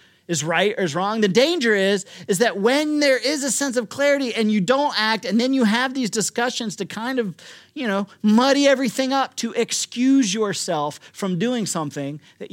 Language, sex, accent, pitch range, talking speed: English, male, American, 175-245 Hz, 200 wpm